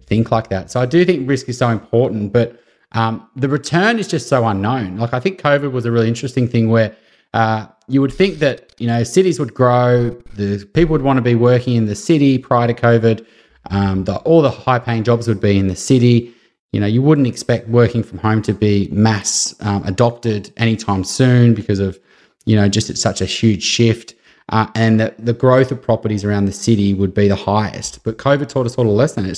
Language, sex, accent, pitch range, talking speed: English, male, Australian, 105-125 Hz, 225 wpm